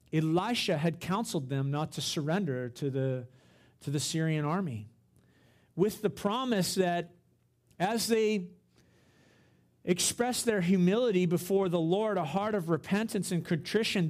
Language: English